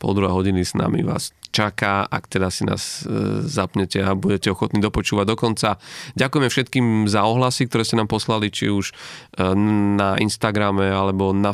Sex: male